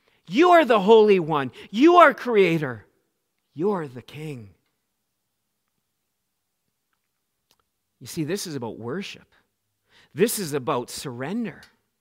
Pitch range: 135-165 Hz